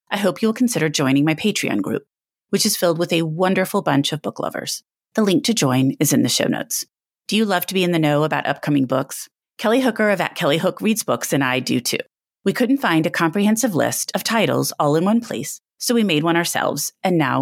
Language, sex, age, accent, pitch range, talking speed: English, female, 30-49, American, 150-205 Hz, 240 wpm